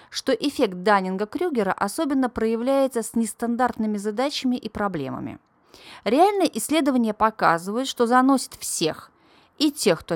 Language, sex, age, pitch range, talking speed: Russian, female, 30-49, 175-260 Hz, 110 wpm